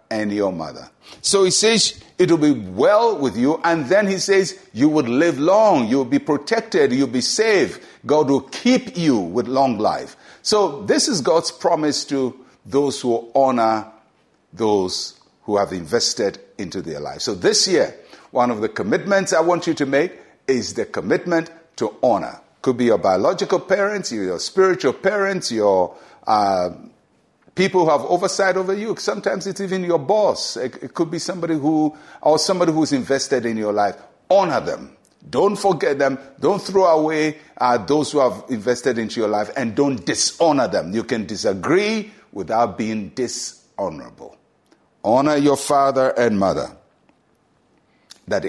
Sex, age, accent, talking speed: male, 60-79, Nigerian, 160 wpm